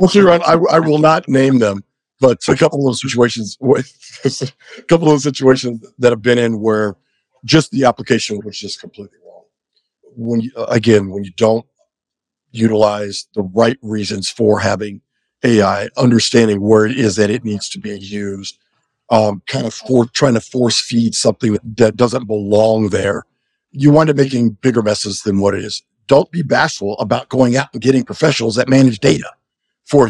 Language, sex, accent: English, male, American